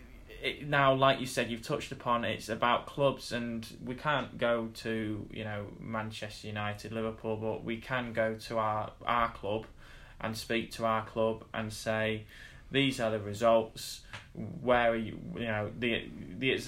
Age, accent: 10-29, British